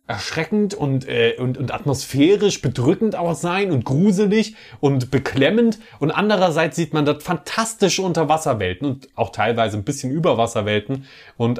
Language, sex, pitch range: German, male, 115-165 Hz